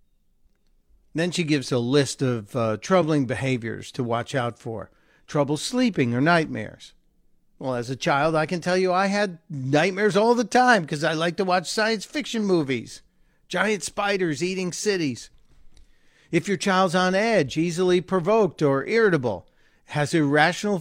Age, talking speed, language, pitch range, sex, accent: 50-69, 155 wpm, English, 135-195 Hz, male, American